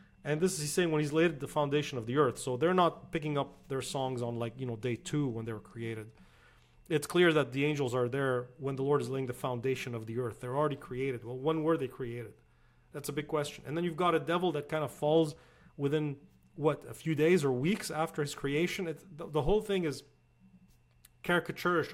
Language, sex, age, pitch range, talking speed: English, male, 30-49, 125-160 Hz, 235 wpm